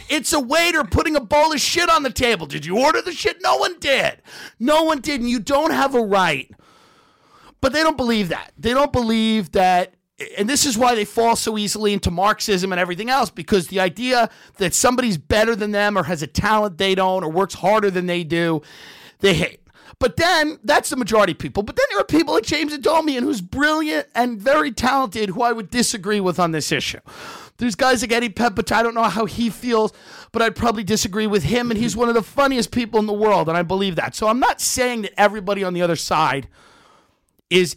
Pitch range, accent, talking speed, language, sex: 195-275 Hz, American, 225 wpm, English, male